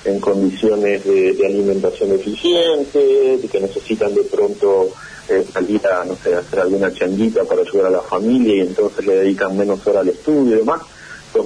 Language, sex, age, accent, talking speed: Spanish, male, 40-59, Argentinian, 185 wpm